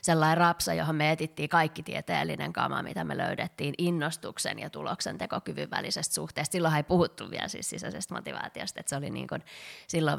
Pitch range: 145-175 Hz